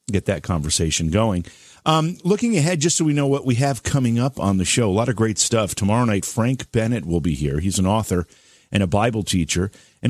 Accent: American